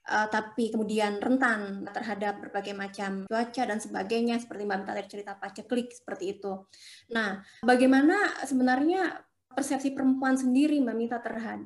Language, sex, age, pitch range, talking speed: Indonesian, female, 20-39, 215-255 Hz, 145 wpm